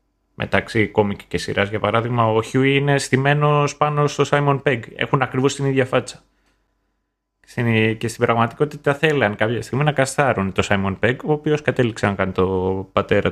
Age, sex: 30-49, male